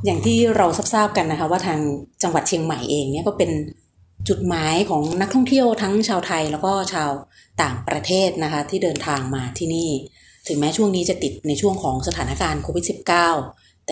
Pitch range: 150-195 Hz